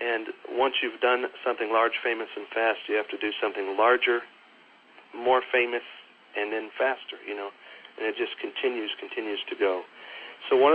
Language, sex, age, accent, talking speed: English, male, 40-59, American, 175 wpm